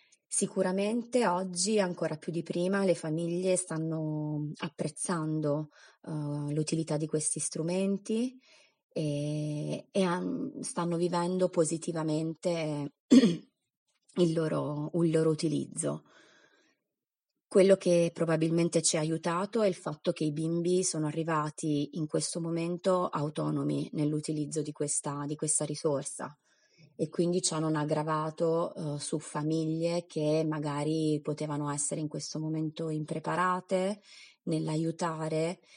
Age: 20-39